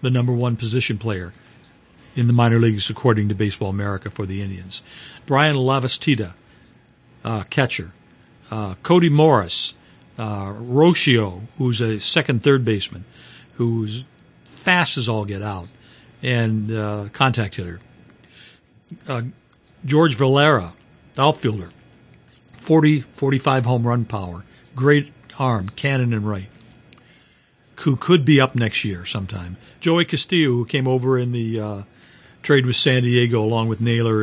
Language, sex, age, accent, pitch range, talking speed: English, male, 60-79, American, 105-135 Hz, 130 wpm